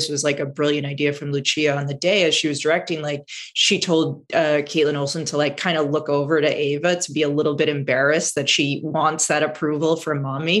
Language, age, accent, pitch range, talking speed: English, 30-49, American, 145-170 Hz, 230 wpm